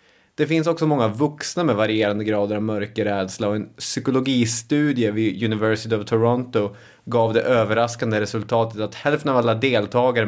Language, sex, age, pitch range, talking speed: English, male, 30-49, 105-120 Hz, 150 wpm